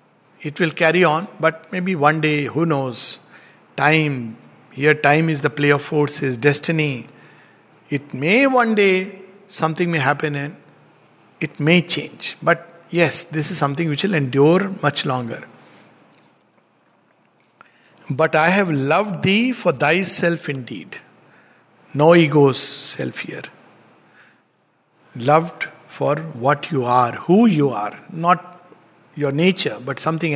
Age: 60-79